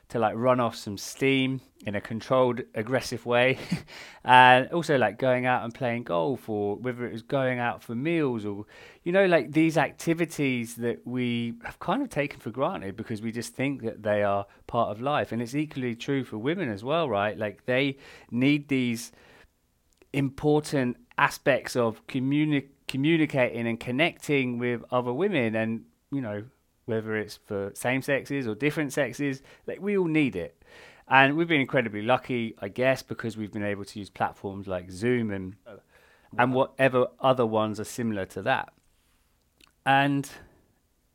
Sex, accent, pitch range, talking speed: male, British, 110-135 Hz, 170 wpm